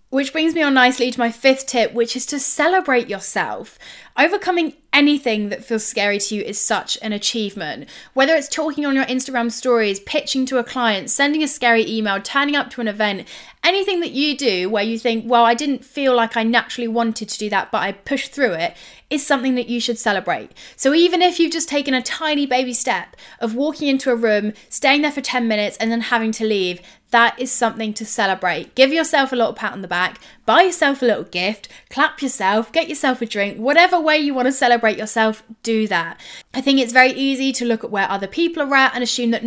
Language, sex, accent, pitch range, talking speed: English, female, British, 215-270 Hz, 225 wpm